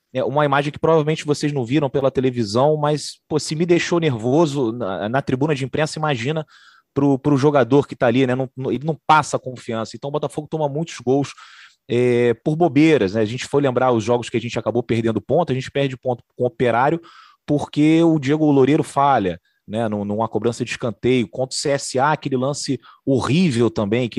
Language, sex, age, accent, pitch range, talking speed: Portuguese, male, 30-49, Brazilian, 115-150 Hz, 190 wpm